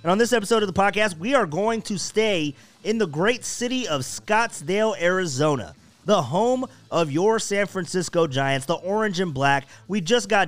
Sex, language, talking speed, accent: male, English, 190 wpm, American